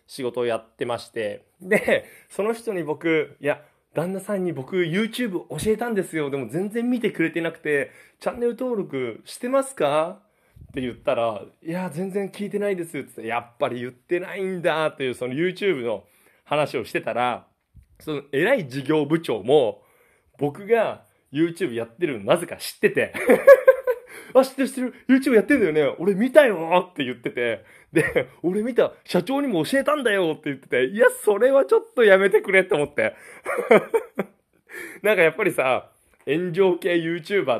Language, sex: Japanese, male